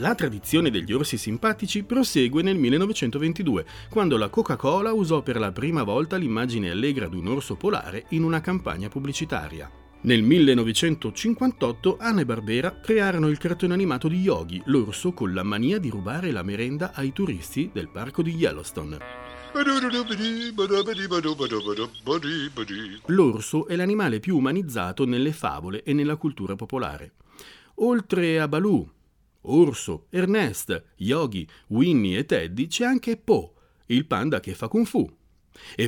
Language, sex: Italian, male